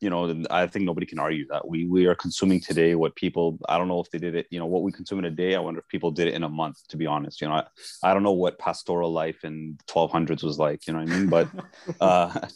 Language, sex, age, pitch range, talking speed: English, male, 30-49, 85-105 Hz, 295 wpm